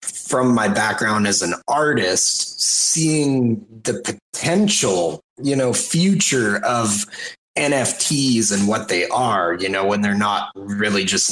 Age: 30-49